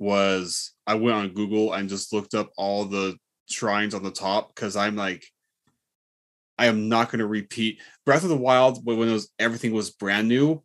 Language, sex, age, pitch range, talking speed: English, male, 20-39, 100-125 Hz, 195 wpm